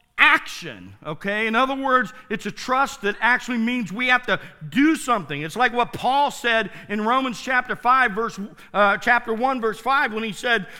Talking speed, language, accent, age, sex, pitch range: 190 wpm, English, American, 50-69, male, 195-265 Hz